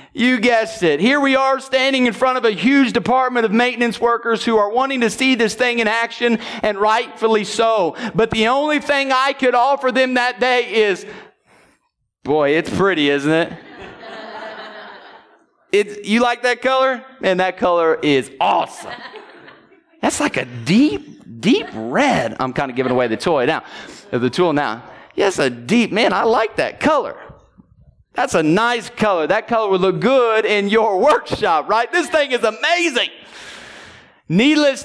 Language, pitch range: English, 215-270 Hz